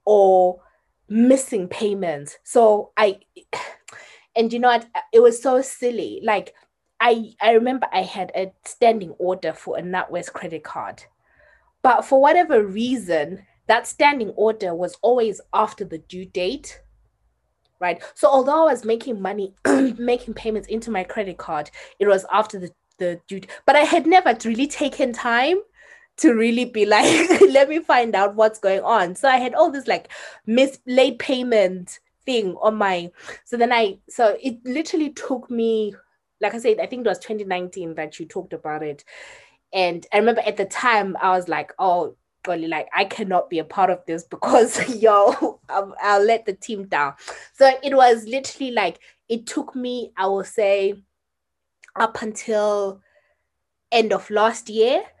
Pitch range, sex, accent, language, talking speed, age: 190-255 Hz, female, South African, English, 165 wpm, 20-39